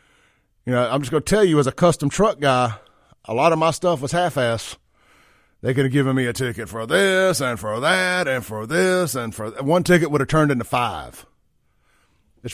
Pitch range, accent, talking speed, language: 115-155 Hz, American, 220 wpm, English